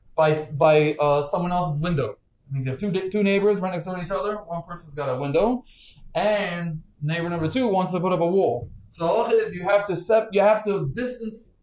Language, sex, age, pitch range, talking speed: English, male, 20-39, 160-210 Hz, 225 wpm